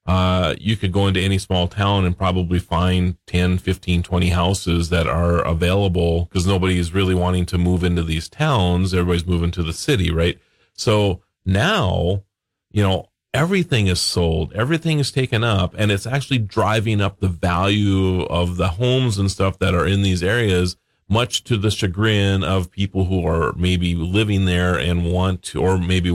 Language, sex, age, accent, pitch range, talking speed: English, male, 40-59, American, 85-100 Hz, 180 wpm